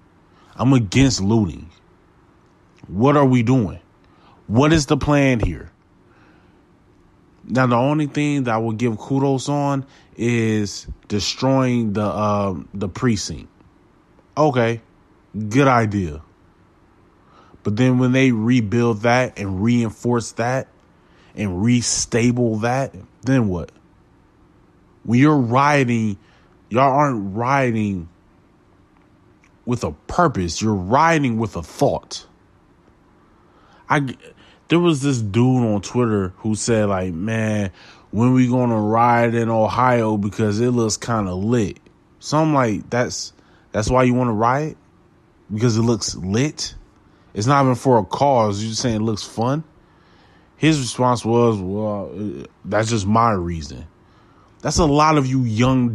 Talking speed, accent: 130 wpm, American